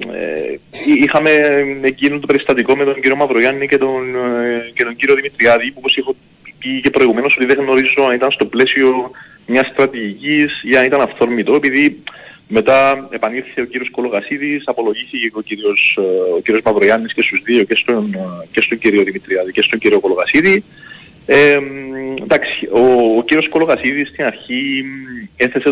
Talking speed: 140 wpm